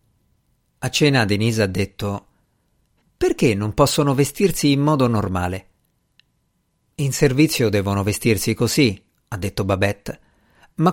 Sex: male